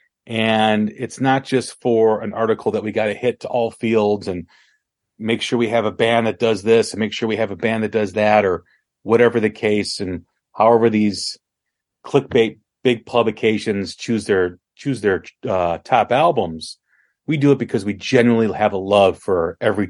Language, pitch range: English, 105-125 Hz